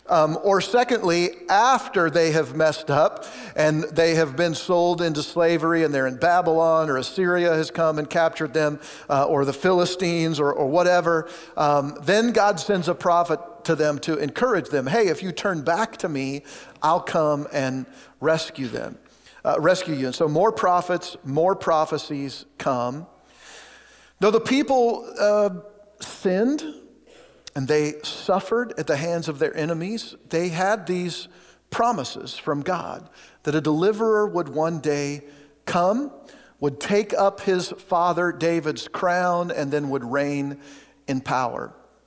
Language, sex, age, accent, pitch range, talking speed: English, male, 50-69, American, 150-185 Hz, 150 wpm